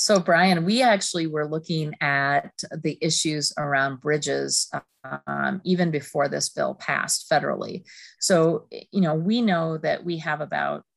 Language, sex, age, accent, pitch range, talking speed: English, female, 40-59, American, 150-175 Hz, 150 wpm